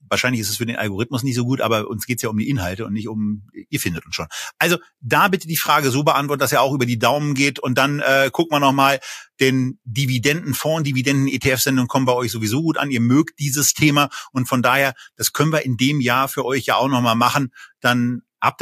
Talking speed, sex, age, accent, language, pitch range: 240 wpm, male, 40-59, German, German, 125-155 Hz